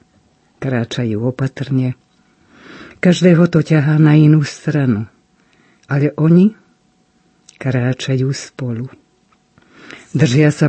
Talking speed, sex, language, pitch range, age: 80 wpm, female, Slovak, 130-165 Hz, 50-69